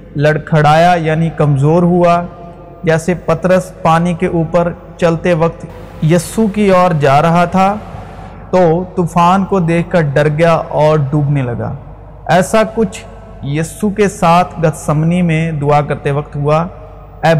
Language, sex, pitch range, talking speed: Urdu, male, 150-185 Hz, 140 wpm